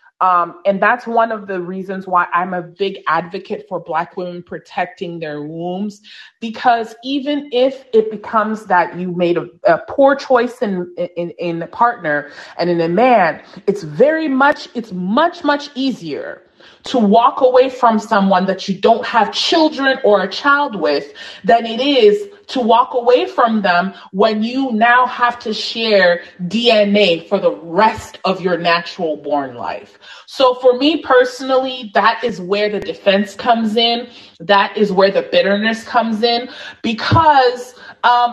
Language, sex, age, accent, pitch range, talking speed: English, female, 30-49, American, 195-250 Hz, 160 wpm